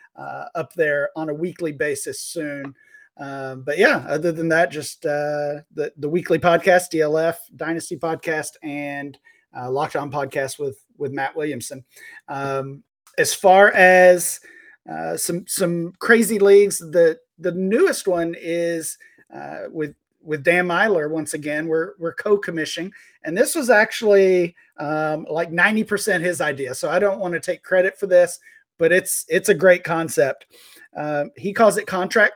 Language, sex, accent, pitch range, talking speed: English, male, American, 155-195 Hz, 160 wpm